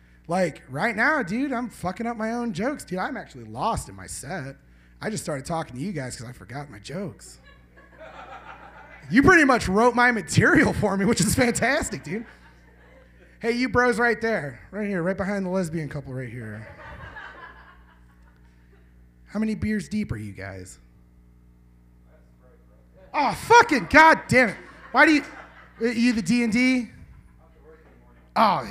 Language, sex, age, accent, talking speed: English, male, 30-49, American, 155 wpm